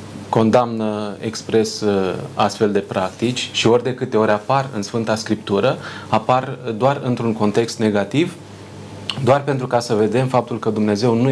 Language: Romanian